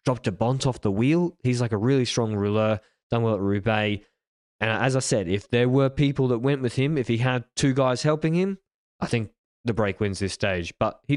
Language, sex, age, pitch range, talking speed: English, male, 20-39, 105-125 Hz, 235 wpm